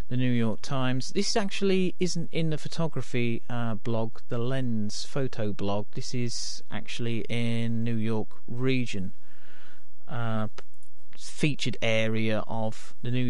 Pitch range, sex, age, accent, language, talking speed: 120-145 Hz, male, 40-59, British, English, 130 wpm